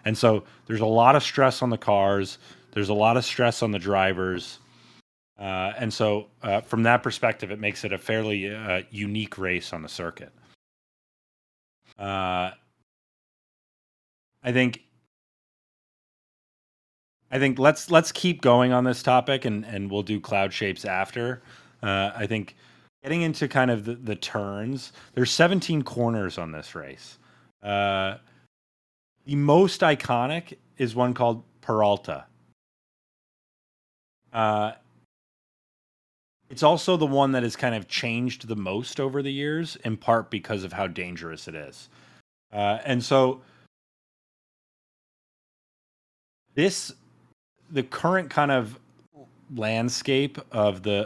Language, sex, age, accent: English, male, 30-49, American